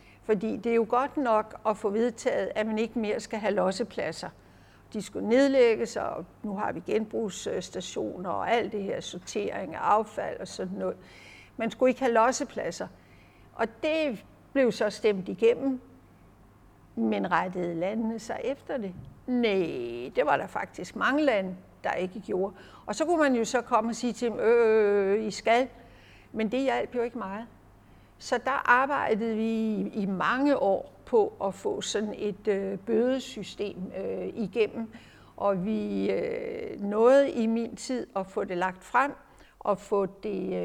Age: 60-79